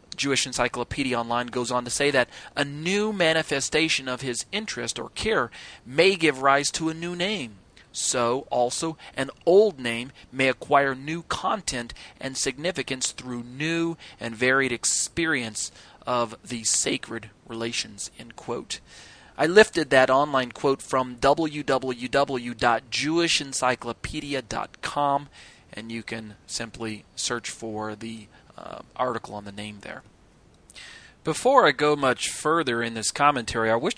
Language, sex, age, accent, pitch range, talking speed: English, male, 30-49, American, 115-140 Hz, 130 wpm